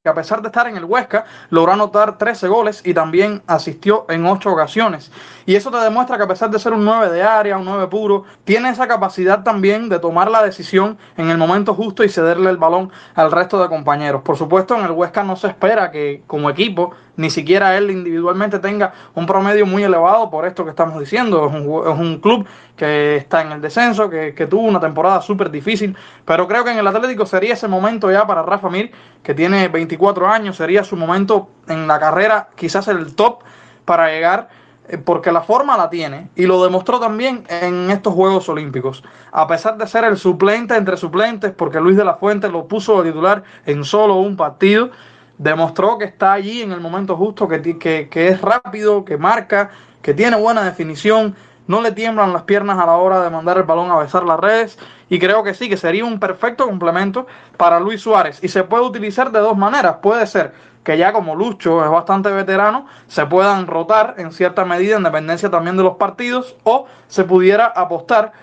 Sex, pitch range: male, 170-215 Hz